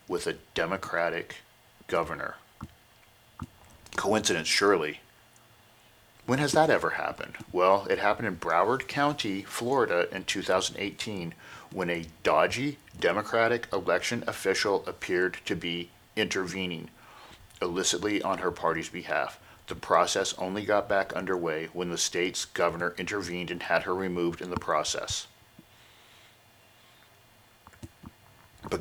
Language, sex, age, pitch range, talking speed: English, male, 40-59, 90-115 Hz, 110 wpm